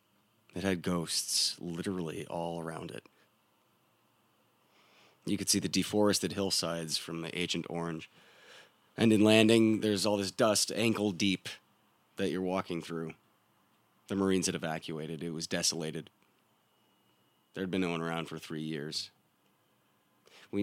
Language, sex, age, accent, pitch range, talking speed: English, male, 30-49, American, 85-100 Hz, 130 wpm